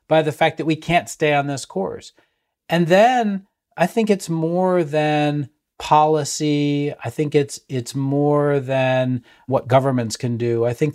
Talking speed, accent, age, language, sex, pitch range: 165 wpm, American, 40-59, English, male, 125-160 Hz